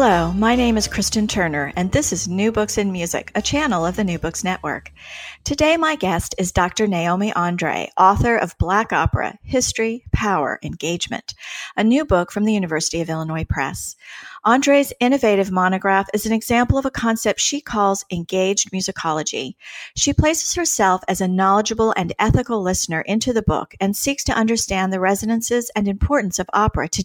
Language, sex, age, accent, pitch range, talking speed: English, female, 40-59, American, 180-230 Hz, 175 wpm